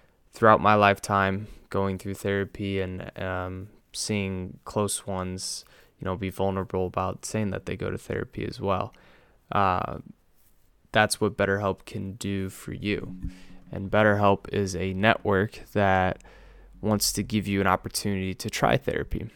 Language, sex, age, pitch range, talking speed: English, male, 20-39, 95-105 Hz, 145 wpm